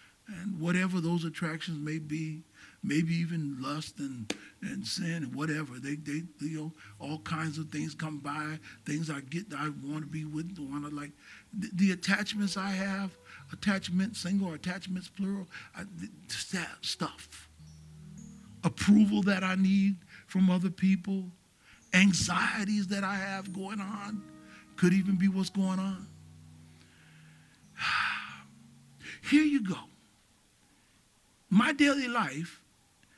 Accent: American